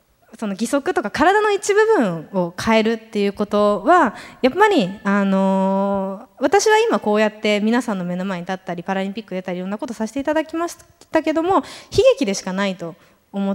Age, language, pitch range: 20-39, Japanese, 195-325 Hz